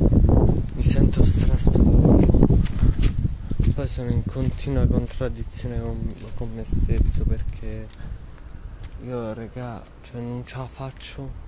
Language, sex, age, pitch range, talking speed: Italian, male, 20-39, 90-125 Hz, 100 wpm